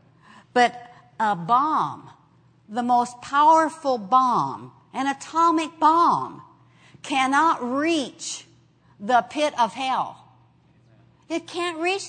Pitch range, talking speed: 245-320 Hz, 95 wpm